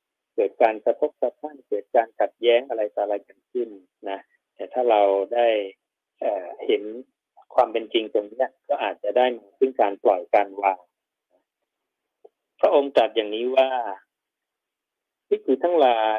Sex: male